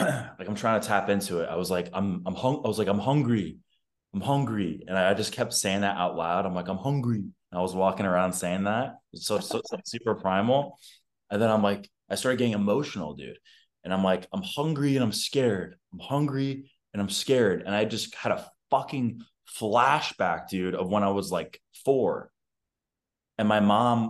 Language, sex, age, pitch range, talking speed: English, male, 20-39, 100-125 Hz, 210 wpm